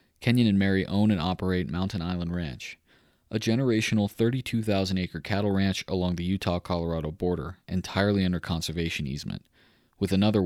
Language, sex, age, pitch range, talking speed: English, male, 30-49, 85-100 Hz, 140 wpm